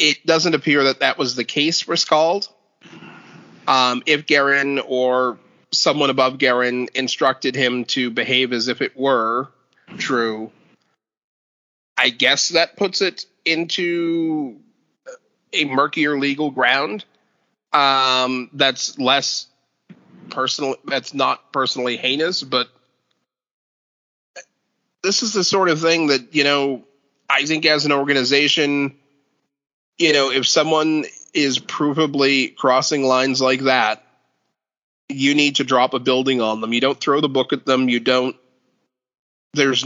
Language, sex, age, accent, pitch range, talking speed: English, male, 30-49, American, 125-150 Hz, 130 wpm